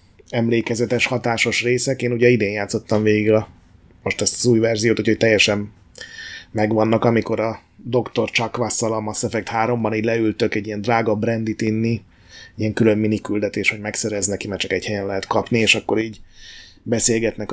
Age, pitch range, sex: 30-49, 105-115 Hz, male